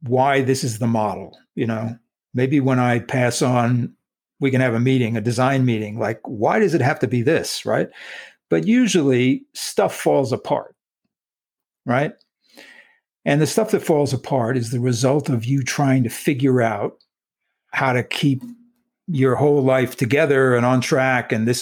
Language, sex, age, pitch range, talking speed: English, male, 60-79, 120-145 Hz, 170 wpm